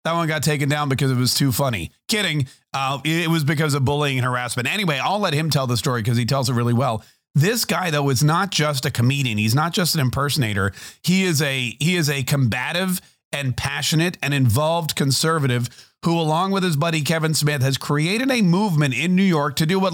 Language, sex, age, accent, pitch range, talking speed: English, male, 40-59, American, 130-170 Hz, 225 wpm